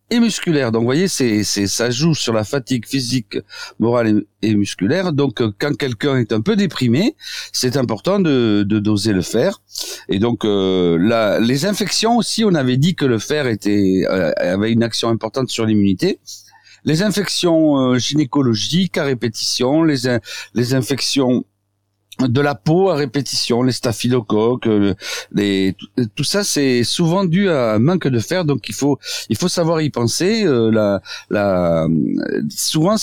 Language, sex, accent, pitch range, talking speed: French, male, French, 110-160 Hz, 165 wpm